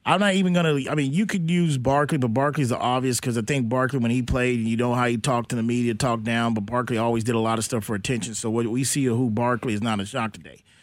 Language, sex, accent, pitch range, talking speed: English, male, American, 140-185 Hz, 295 wpm